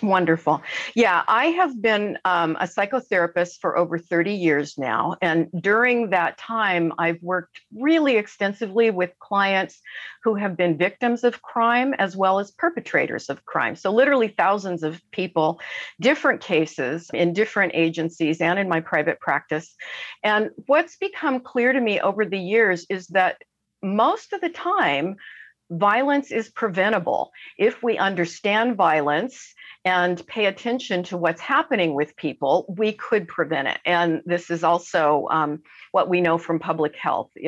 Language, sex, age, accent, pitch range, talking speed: English, female, 50-69, American, 170-230 Hz, 150 wpm